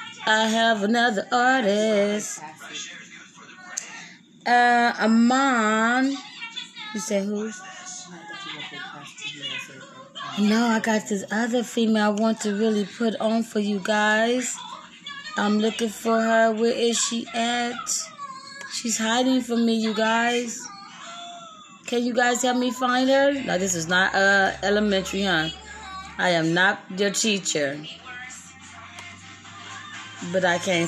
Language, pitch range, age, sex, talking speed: English, 185-240 Hz, 20-39, female, 120 wpm